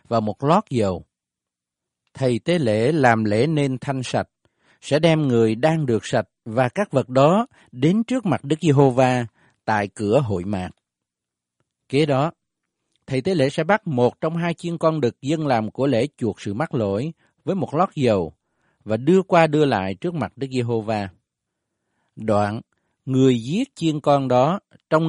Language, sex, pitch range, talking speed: Vietnamese, male, 110-150 Hz, 170 wpm